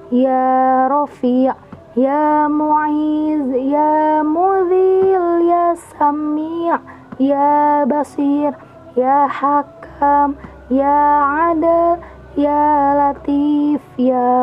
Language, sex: Indonesian, female